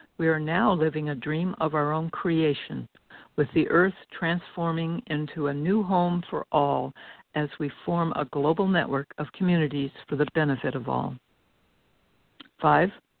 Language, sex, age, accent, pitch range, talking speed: English, female, 60-79, American, 150-185 Hz, 155 wpm